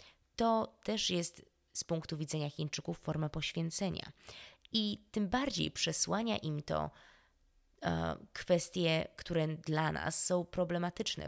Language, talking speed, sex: Polish, 110 wpm, female